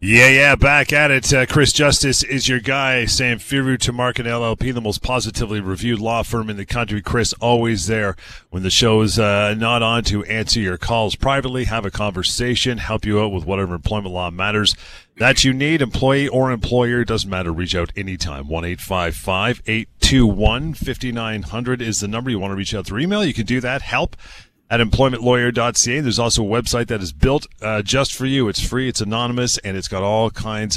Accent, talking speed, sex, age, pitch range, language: American, 200 wpm, male, 40-59, 95-125 Hz, English